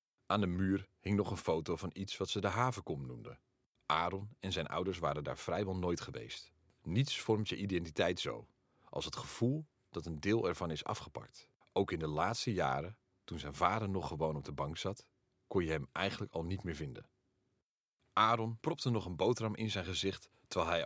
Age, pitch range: 40-59, 85-120 Hz